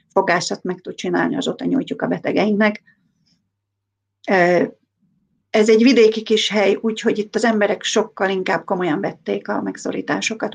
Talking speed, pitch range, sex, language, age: 130 wpm, 185-210 Hz, female, Hungarian, 40-59